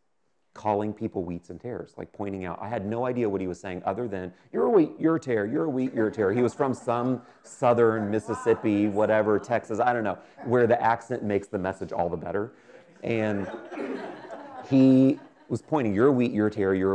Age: 30-49